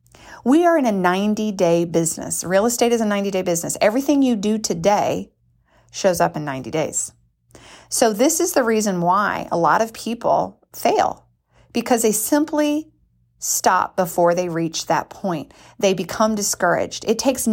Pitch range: 175-245 Hz